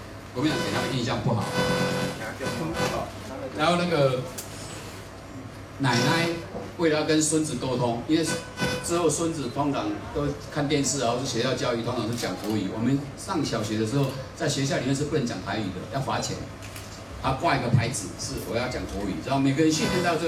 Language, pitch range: Chinese, 110-150 Hz